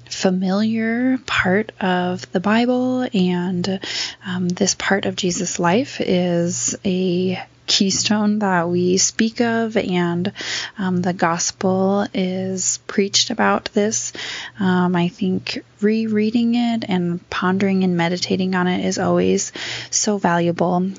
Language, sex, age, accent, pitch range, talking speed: English, female, 20-39, American, 180-220 Hz, 120 wpm